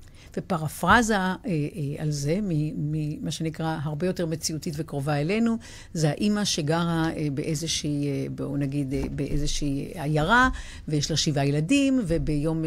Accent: native